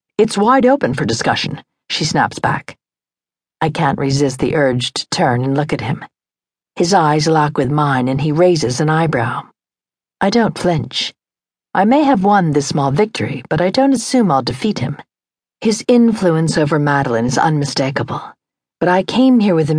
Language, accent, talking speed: English, American, 175 wpm